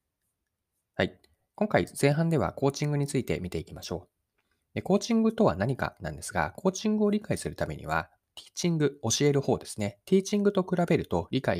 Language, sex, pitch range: Japanese, male, 95-160 Hz